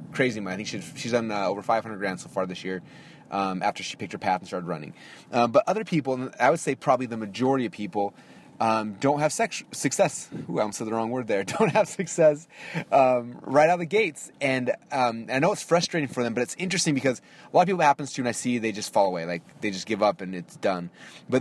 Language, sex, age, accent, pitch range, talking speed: English, male, 30-49, American, 110-145 Hz, 265 wpm